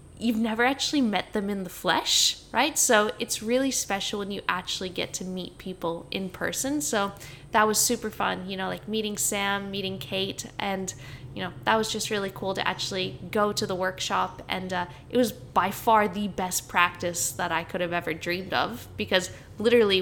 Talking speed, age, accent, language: 200 wpm, 10-29, American, English